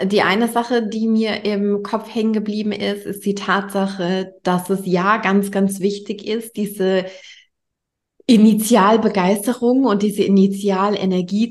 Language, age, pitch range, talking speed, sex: German, 20-39, 195-215 Hz, 130 wpm, female